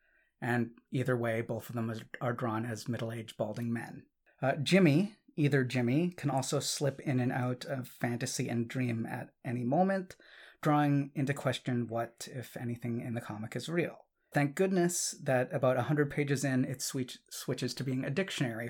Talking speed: 170 wpm